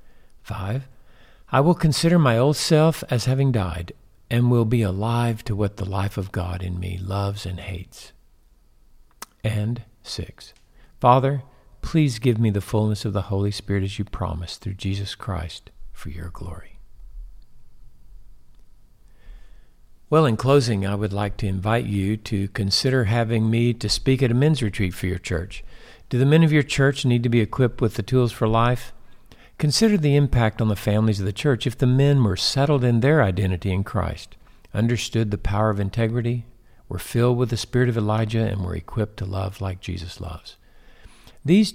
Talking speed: 175 wpm